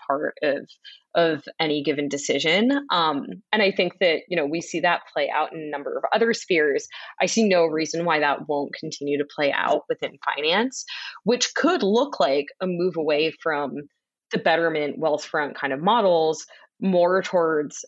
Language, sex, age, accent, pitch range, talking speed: English, female, 20-39, American, 160-270 Hz, 180 wpm